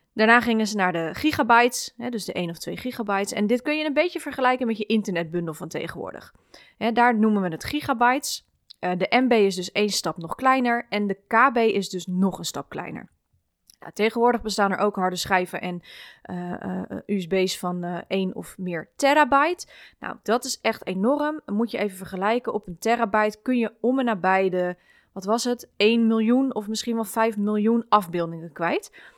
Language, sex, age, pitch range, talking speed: Dutch, female, 20-39, 190-255 Hz, 185 wpm